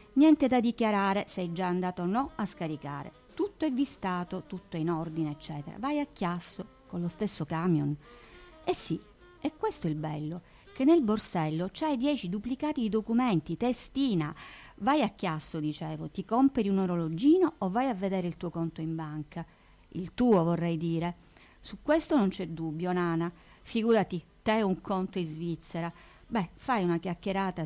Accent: native